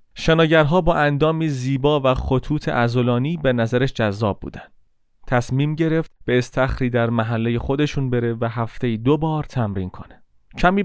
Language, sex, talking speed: Persian, male, 145 wpm